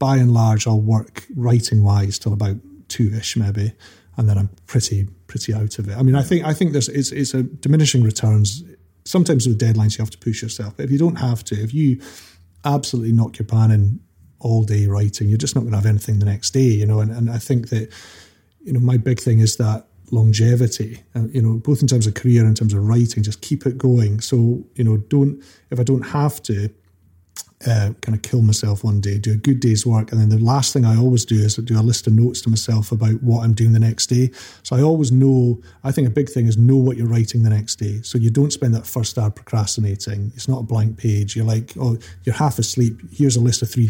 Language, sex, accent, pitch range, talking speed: English, male, British, 105-125 Hz, 245 wpm